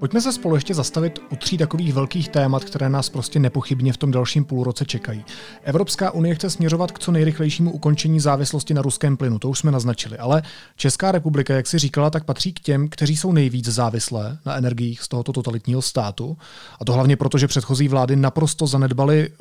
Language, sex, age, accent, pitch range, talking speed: Czech, male, 30-49, native, 130-155 Hz, 195 wpm